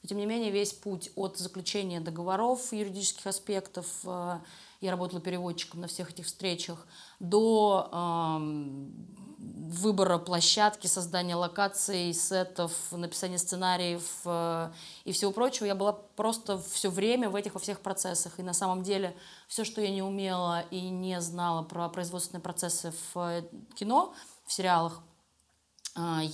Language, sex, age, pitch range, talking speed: Russian, female, 20-39, 175-200 Hz, 140 wpm